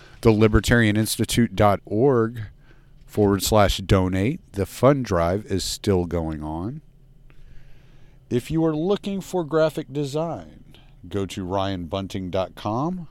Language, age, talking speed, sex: English, 40-59, 95 wpm, male